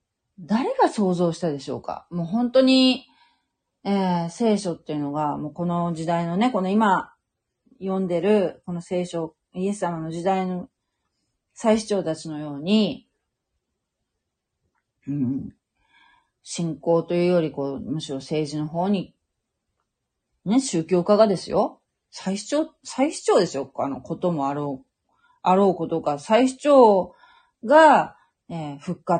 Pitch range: 145-195 Hz